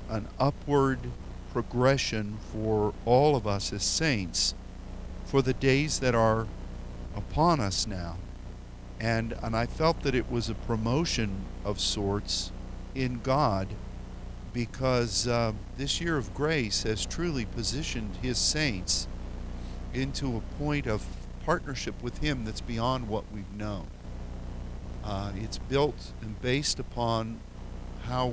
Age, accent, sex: 50-69, American, male